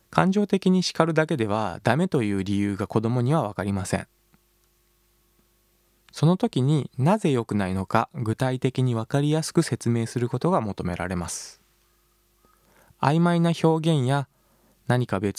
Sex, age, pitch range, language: male, 20-39, 110-150 Hz, Japanese